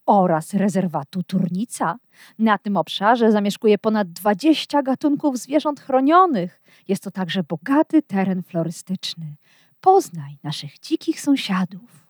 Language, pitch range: Polish, 180-275 Hz